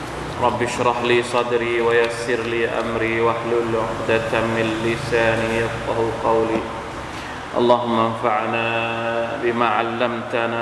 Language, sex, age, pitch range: Thai, male, 20-39, 115-125 Hz